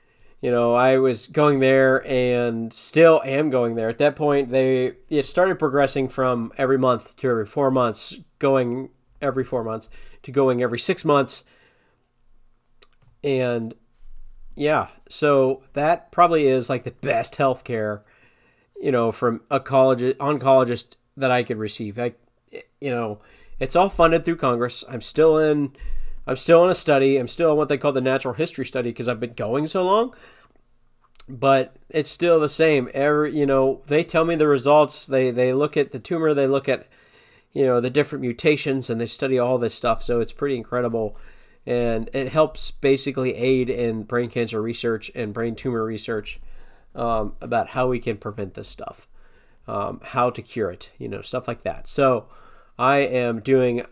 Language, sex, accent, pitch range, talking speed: English, male, American, 120-145 Hz, 175 wpm